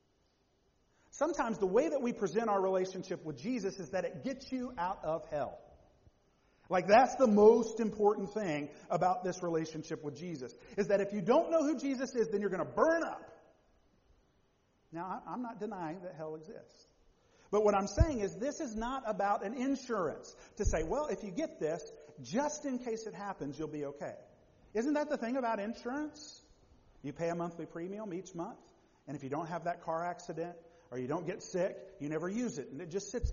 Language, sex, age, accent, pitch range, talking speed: English, male, 50-69, American, 155-240 Hz, 200 wpm